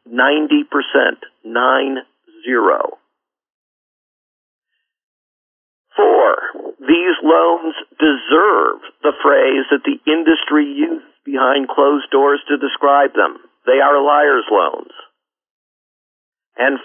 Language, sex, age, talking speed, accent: English, male, 50-69, 80 wpm, American